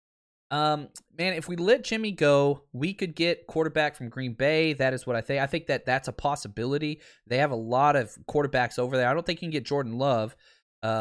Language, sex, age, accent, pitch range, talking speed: English, male, 20-39, American, 120-160 Hz, 230 wpm